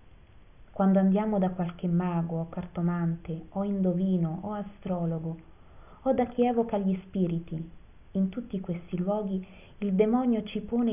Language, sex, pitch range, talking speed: Italian, female, 170-205 Hz, 135 wpm